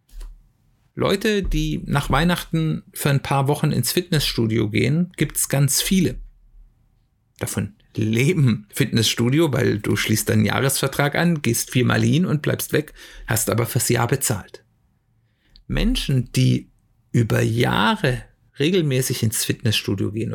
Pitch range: 120-165 Hz